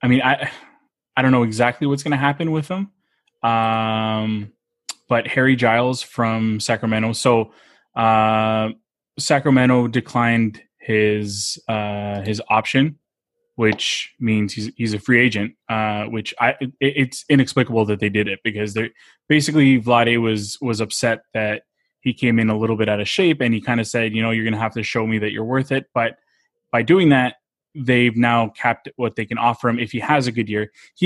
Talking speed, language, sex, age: 190 wpm, English, male, 20-39